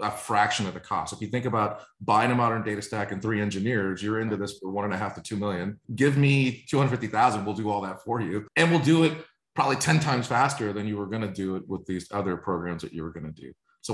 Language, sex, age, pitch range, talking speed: English, male, 30-49, 105-125 Hz, 265 wpm